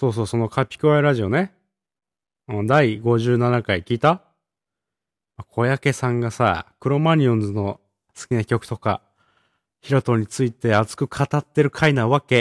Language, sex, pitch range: Japanese, male, 100-125 Hz